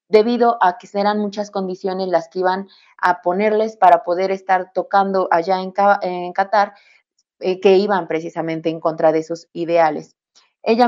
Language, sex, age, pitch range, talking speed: Spanish, female, 30-49, 175-205 Hz, 155 wpm